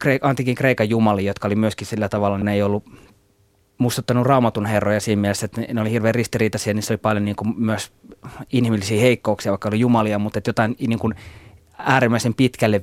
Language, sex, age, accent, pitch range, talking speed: Finnish, male, 20-39, native, 105-125 Hz, 185 wpm